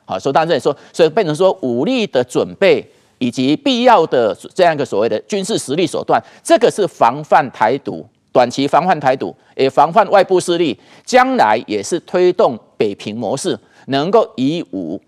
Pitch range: 180-255 Hz